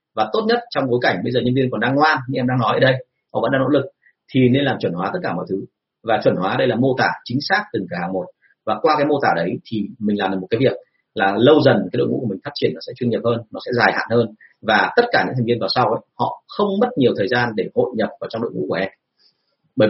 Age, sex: 30-49, male